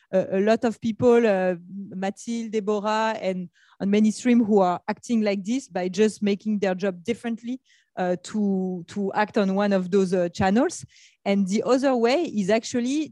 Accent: French